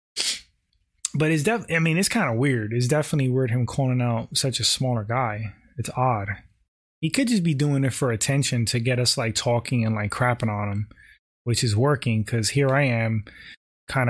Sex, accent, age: male, American, 20-39